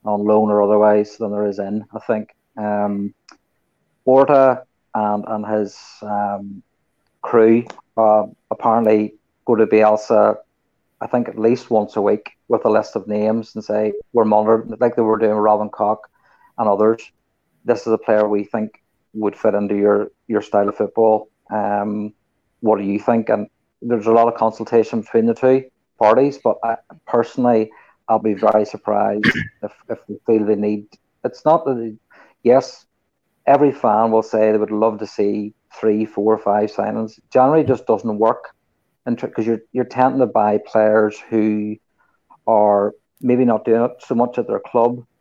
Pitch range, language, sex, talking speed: 105-120 Hz, English, male, 175 wpm